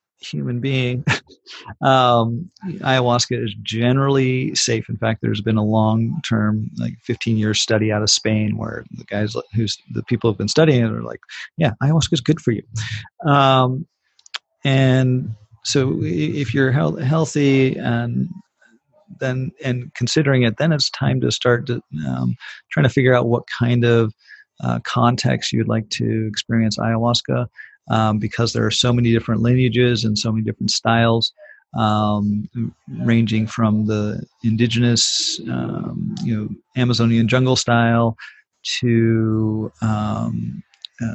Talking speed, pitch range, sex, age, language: 140 wpm, 110-135 Hz, male, 40-59, English